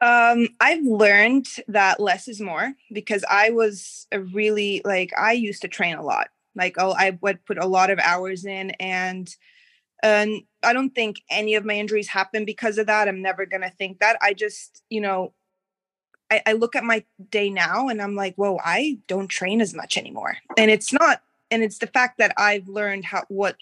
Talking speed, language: 205 wpm, English